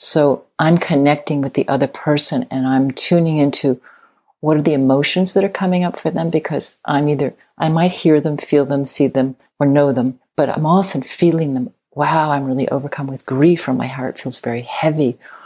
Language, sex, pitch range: English, female, 135-165 Hz